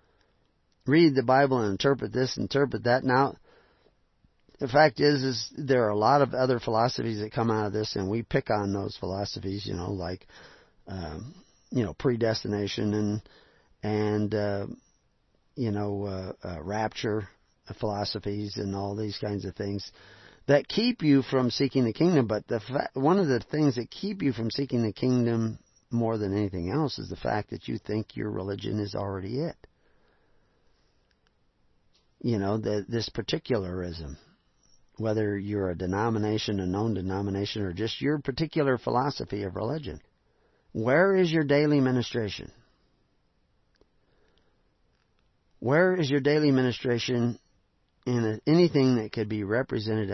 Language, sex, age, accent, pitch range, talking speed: English, male, 50-69, American, 100-130 Hz, 145 wpm